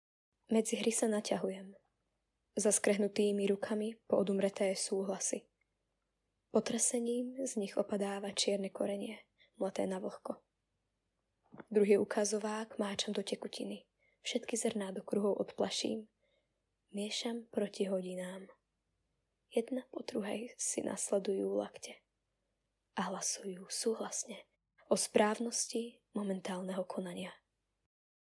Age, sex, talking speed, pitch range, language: 10-29, female, 95 wpm, 195-225 Hz, Slovak